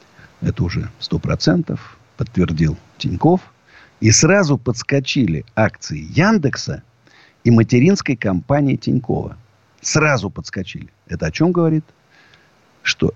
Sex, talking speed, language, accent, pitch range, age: male, 95 wpm, Russian, native, 100-165 Hz, 50-69